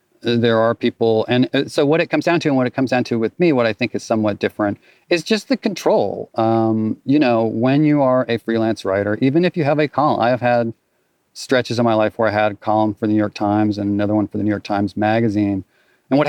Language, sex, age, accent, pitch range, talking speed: English, male, 40-59, American, 105-135 Hz, 260 wpm